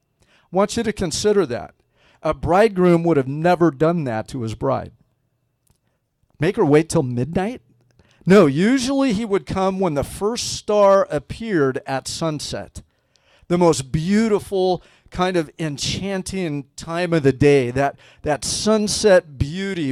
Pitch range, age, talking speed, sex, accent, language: 130-185 Hz, 50-69, 140 wpm, male, American, English